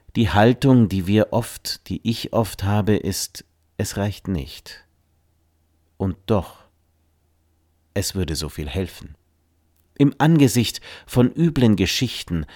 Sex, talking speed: male, 120 wpm